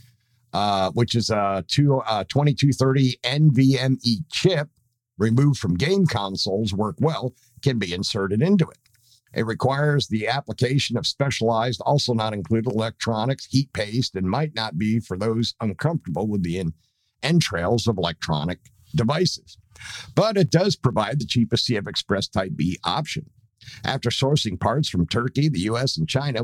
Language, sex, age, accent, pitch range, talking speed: English, male, 50-69, American, 110-140 Hz, 145 wpm